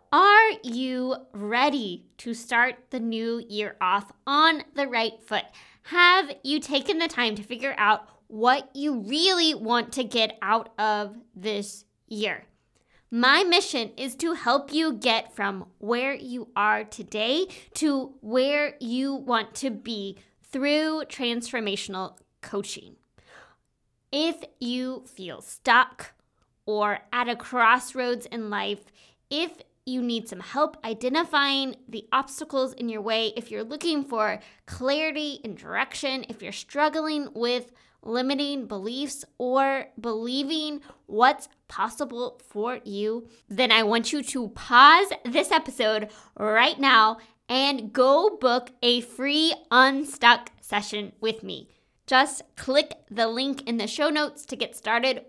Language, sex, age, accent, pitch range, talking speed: English, female, 20-39, American, 225-280 Hz, 130 wpm